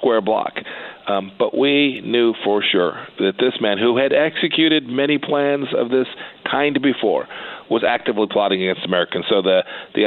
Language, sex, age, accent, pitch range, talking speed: English, male, 40-59, American, 95-125 Hz, 160 wpm